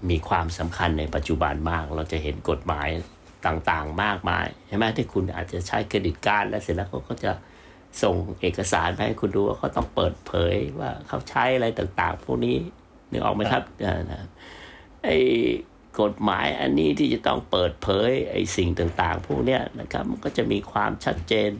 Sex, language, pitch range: male, Thai, 85-100 Hz